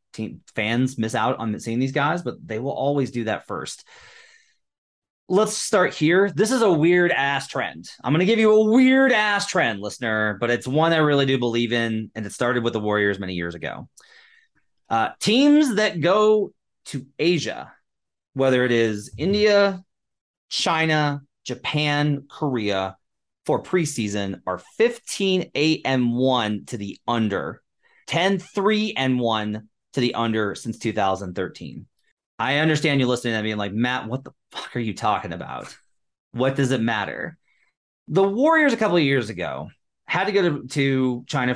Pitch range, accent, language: 110-170 Hz, American, English